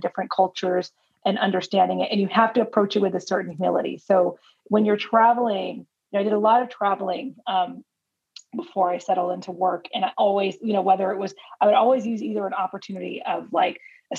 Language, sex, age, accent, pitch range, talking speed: English, female, 30-49, American, 185-220 Hz, 215 wpm